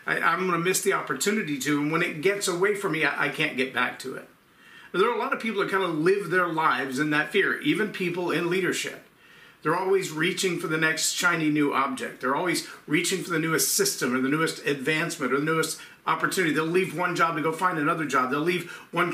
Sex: male